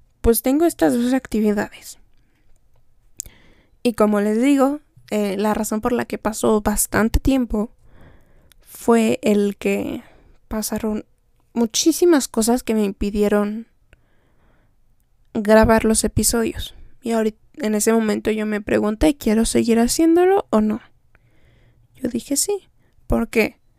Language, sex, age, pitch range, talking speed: Spanish, female, 10-29, 205-245 Hz, 120 wpm